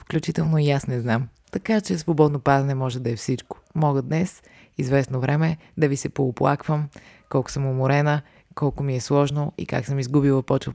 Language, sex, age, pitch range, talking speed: Bulgarian, female, 20-39, 130-150 Hz, 185 wpm